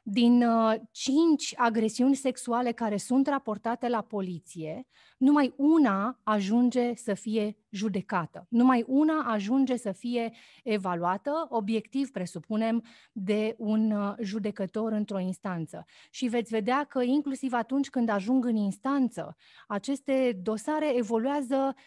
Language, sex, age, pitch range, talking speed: Romanian, female, 30-49, 210-270 Hz, 110 wpm